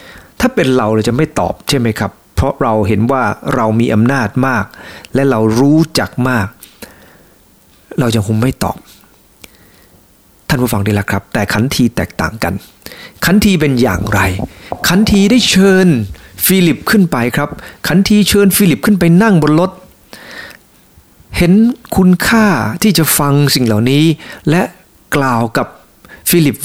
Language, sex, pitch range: English, male, 115-175 Hz